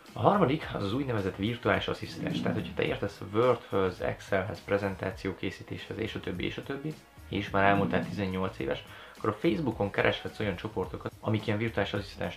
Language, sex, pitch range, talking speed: Hungarian, male, 95-110 Hz, 175 wpm